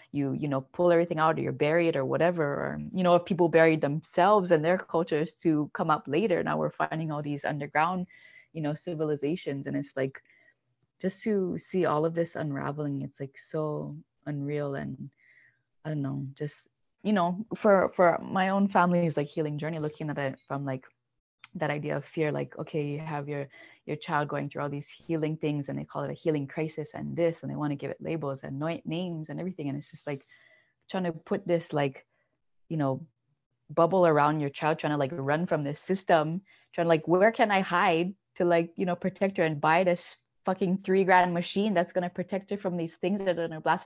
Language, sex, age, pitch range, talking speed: English, female, 20-39, 145-180 Hz, 220 wpm